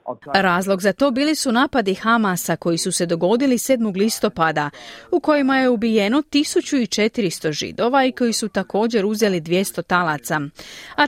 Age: 30-49